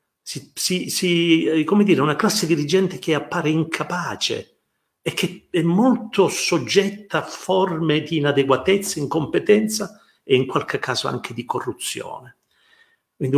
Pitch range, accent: 140-195 Hz, native